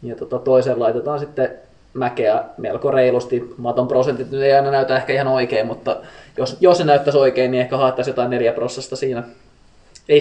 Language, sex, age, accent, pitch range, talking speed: Finnish, male, 20-39, native, 125-155 Hz, 175 wpm